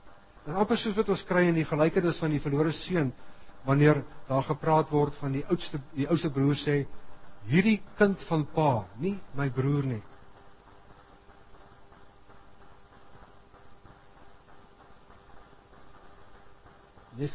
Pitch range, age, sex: 100-150 Hz, 60-79, male